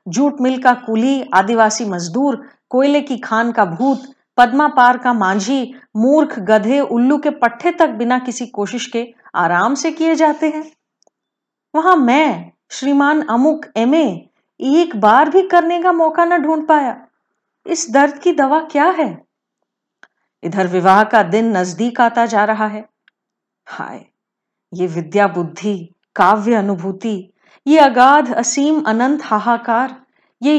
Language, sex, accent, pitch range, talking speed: Hindi, female, native, 220-295 Hz, 135 wpm